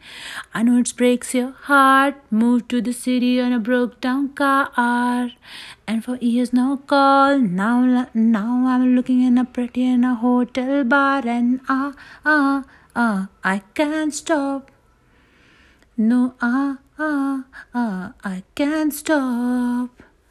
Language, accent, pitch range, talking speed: Hindi, native, 245-280 Hz, 145 wpm